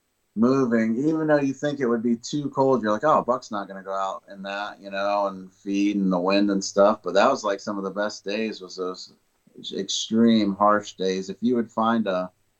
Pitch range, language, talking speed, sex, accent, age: 95-105 Hz, English, 230 wpm, male, American, 30-49